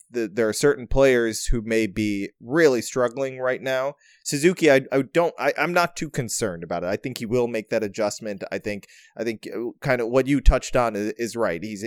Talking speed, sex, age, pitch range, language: 220 wpm, male, 30-49, 105-135 Hz, English